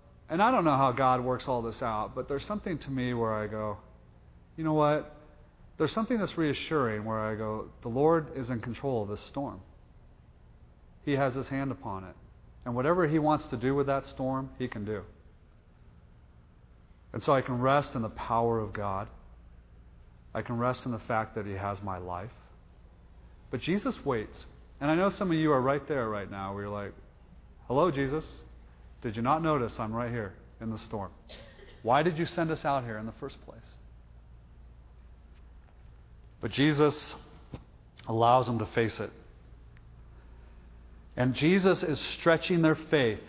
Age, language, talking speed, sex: 30-49, English, 175 wpm, male